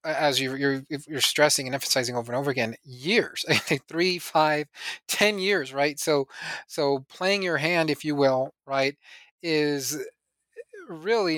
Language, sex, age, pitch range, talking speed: English, male, 30-49, 135-175 Hz, 160 wpm